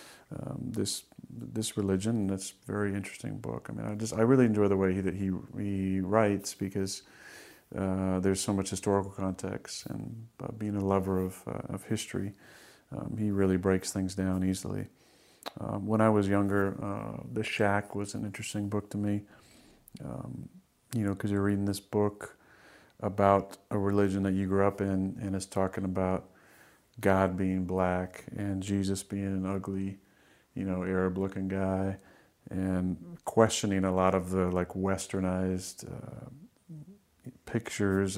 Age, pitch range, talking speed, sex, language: 40-59, 95-105 Hz, 160 wpm, male, English